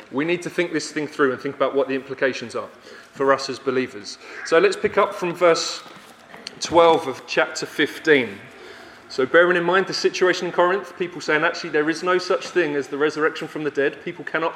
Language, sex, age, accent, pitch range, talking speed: English, male, 30-49, British, 145-195 Hz, 215 wpm